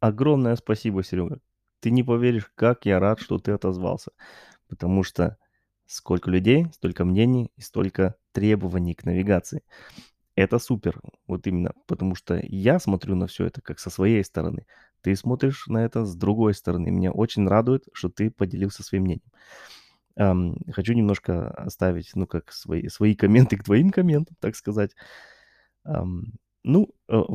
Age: 20-39